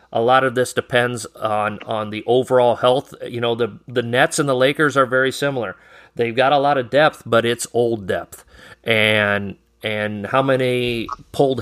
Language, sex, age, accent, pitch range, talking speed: English, male, 40-59, American, 110-125 Hz, 185 wpm